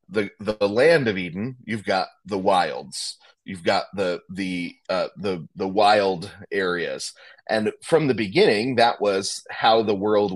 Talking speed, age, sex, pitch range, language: 140 wpm, 30-49, male, 100-120 Hz, English